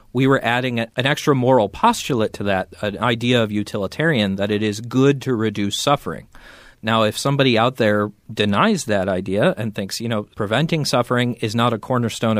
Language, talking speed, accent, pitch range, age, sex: English, 185 wpm, American, 105-140 Hz, 40-59, male